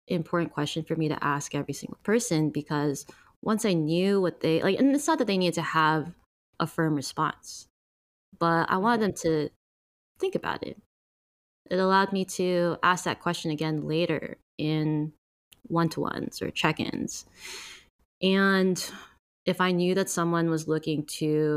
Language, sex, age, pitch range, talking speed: English, female, 20-39, 150-180 Hz, 160 wpm